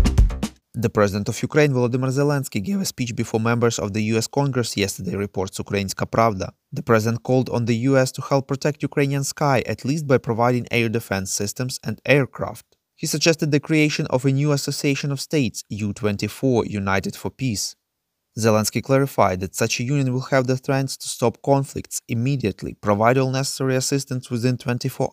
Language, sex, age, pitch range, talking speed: English, male, 20-39, 110-140 Hz, 175 wpm